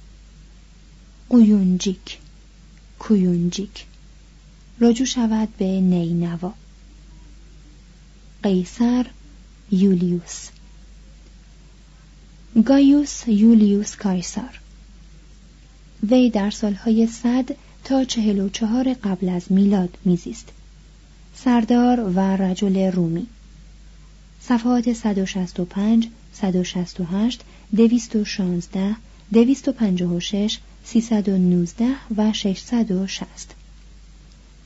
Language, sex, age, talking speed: Persian, female, 30-49, 60 wpm